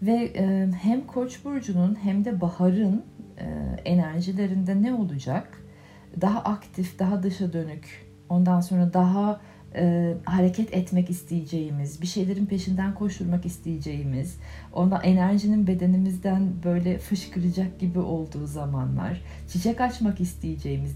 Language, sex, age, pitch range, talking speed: Turkish, female, 40-59, 165-210 Hz, 105 wpm